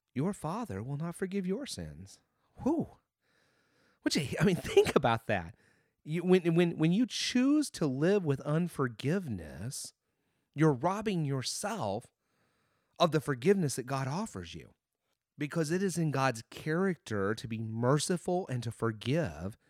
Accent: American